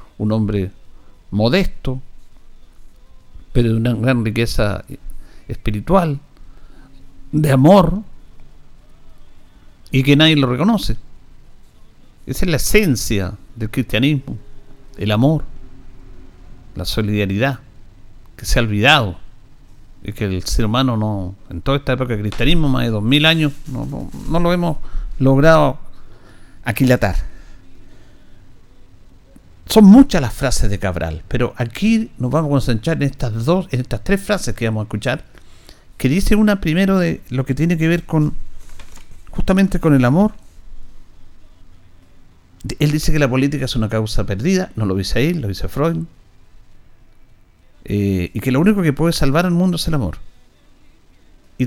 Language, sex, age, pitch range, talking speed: Spanish, male, 50-69, 95-150 Hz, 145 wpm